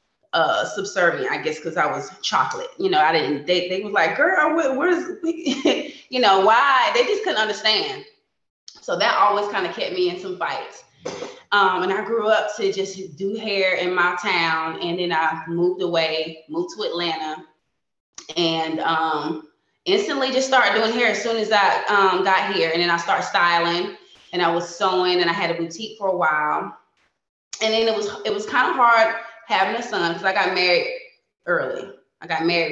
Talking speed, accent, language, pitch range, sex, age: 195 wpm, American, English, 165-260 Hz, female, 20-39